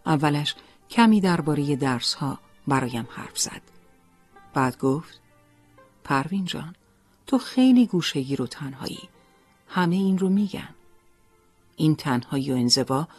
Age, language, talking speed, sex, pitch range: 40-59, Persian, 110 wpm, female, 120-170 Hz